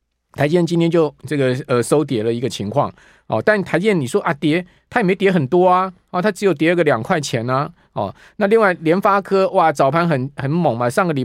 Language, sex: Chinese, male